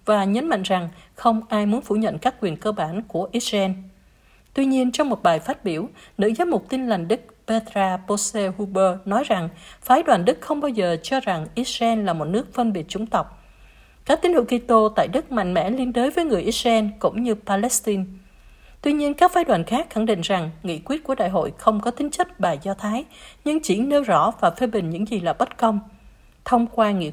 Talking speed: 225 wpm